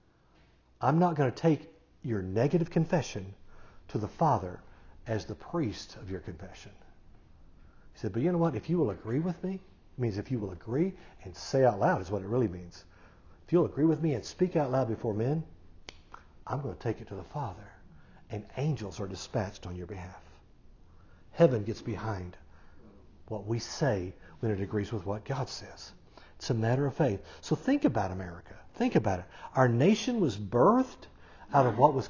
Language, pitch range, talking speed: English, 100-150 Hz, 195 wpm